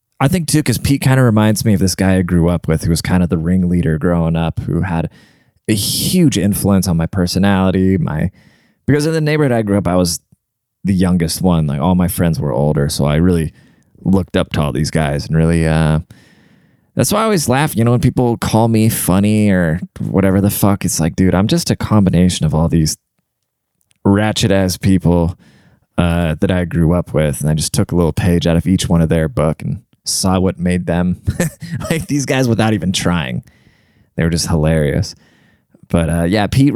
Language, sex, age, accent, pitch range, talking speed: English, male, 20-39, American, 85-115 Hz, 215 wpm